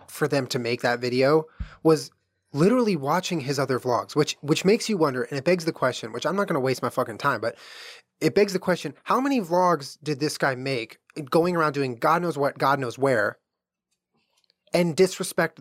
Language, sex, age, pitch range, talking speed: English, male, 20-39, 125-165 Hz, 210 wpm